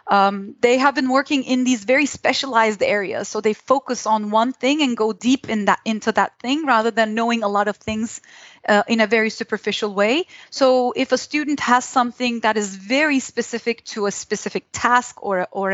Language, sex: English, female